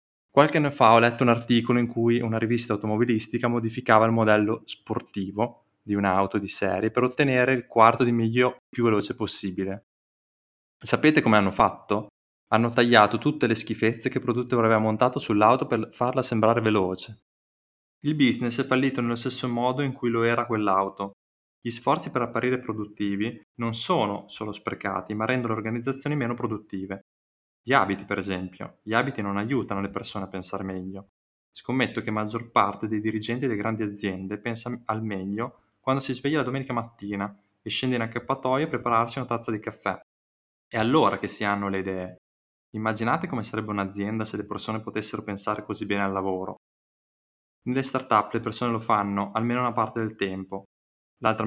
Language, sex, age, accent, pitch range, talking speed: Italian, male, 20-39, native, 100-120 Hz, 175 wpm